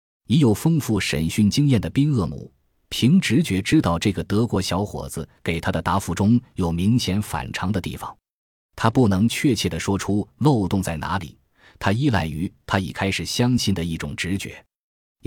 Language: Chinese